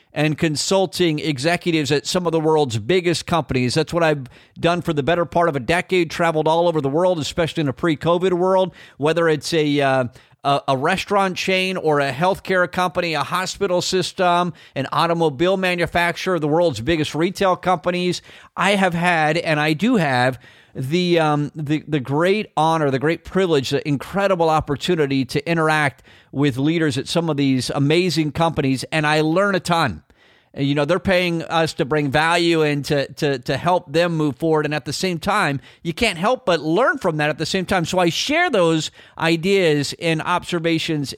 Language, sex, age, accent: English, male, 50-69, American